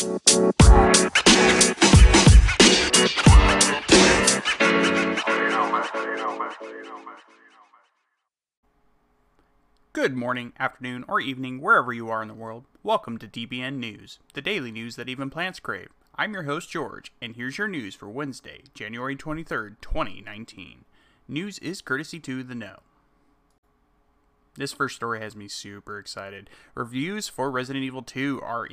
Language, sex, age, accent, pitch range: English, male, 30-49, American, 110-135 Hz